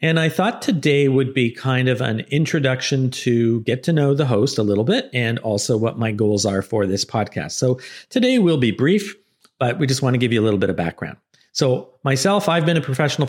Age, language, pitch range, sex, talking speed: 50-69, English, 115-145 Hz, male, 230 wpm